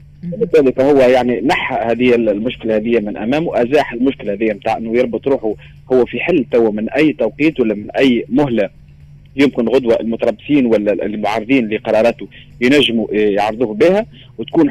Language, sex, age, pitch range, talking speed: Arabic, male, 30-49, 120-160 Hz, 150 wpm